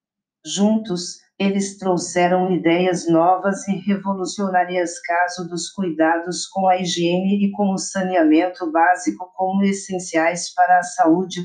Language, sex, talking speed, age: Portuguese, female, 120 wpm, 50-69